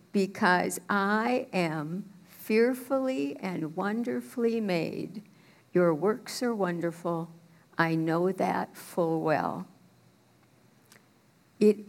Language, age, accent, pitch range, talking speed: English, 60-79, American, 185-230 Hz, 85 wpm